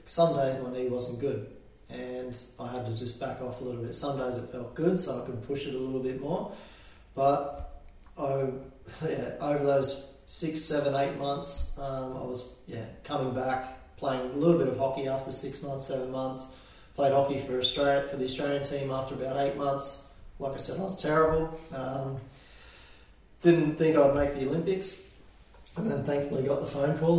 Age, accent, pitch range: 20-39, Australian, 125-140 Hz